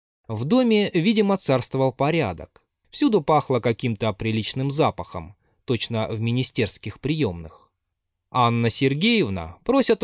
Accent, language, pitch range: native, Russian, 100-160 Hz